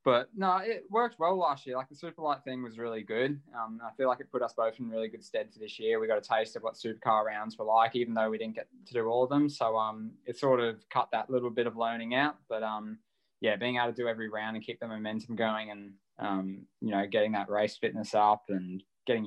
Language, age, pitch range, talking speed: English, 10-29, 110-125 Hz, 270 wpm